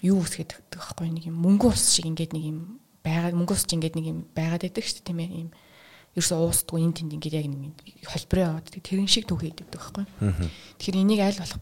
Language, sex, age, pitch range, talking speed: English, female, 20-39, 160-195 Hz, 185 wpm